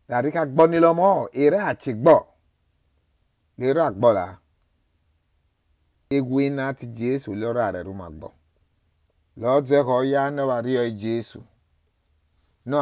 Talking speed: 95 wpm